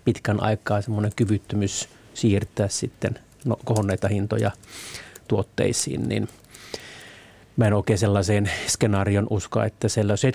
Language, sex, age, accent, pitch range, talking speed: Finnish, male, 30-49, native, 100-120 Hz, 110 wpm